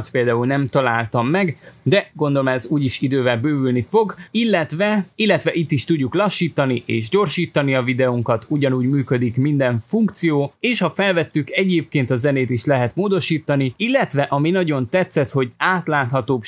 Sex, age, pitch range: male, 20-39, 125-165 Hz